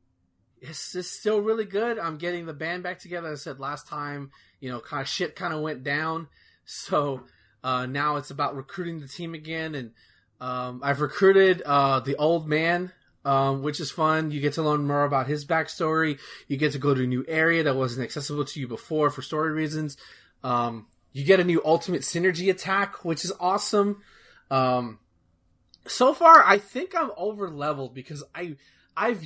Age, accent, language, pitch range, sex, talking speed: 20-39, American, English, 135-190 Hz, male, 185 wpm